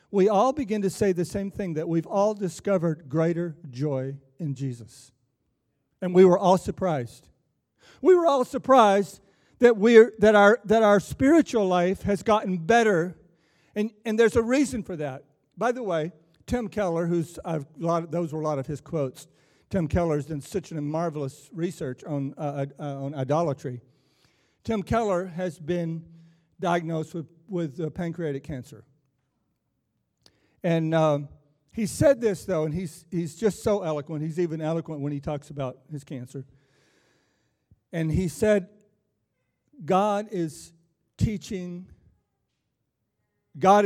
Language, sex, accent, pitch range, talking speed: English, male, American, 145-200 Hz, 150 wpm